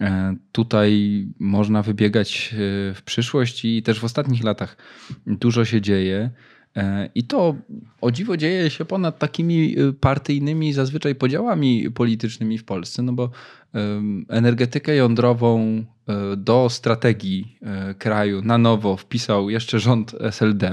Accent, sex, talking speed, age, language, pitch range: native, male, 115 wpm, 20-39, Polish, 105-125 Hz